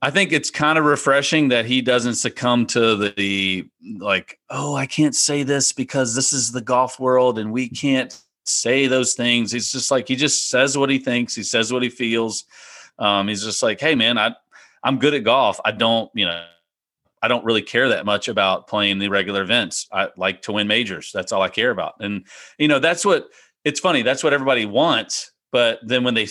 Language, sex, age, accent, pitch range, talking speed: English, male, 40-59, American, 110-140 Hz, 215 wpm